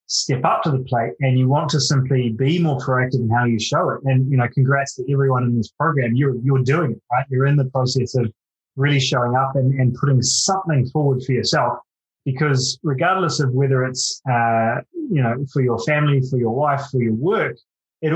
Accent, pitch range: Australian, 125-145 Hz